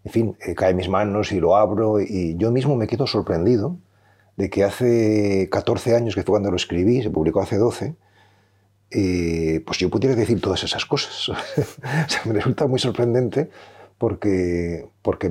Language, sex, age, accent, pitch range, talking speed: Spanish, male, 40-59, Spanish, 95-115 Hz, 180 wpm